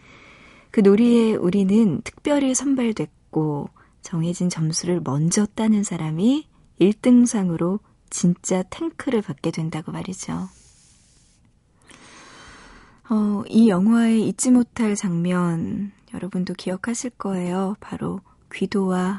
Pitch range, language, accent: 175-220 Hz, Korean, native